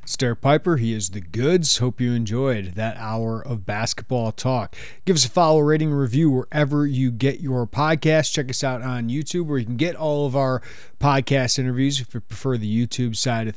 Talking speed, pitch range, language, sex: 210 wpm, 120-145 Hz, English, male